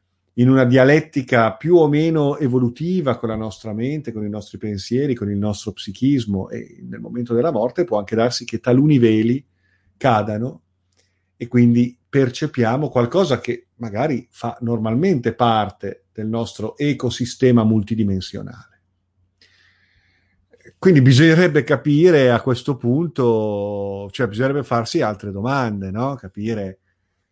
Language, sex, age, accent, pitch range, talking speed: Italian, male, 50-69, native, 100-125 Hz, 125 wpm